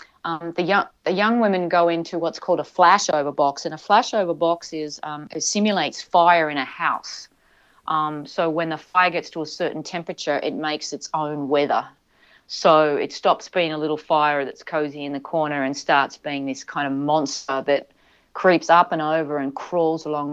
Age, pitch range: 40-59, 150-185 Hz